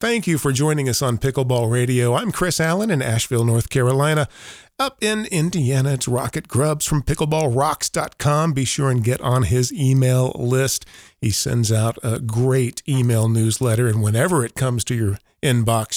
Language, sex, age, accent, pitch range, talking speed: English, male, 40-59, American, 120-155 Hz, 170 wpm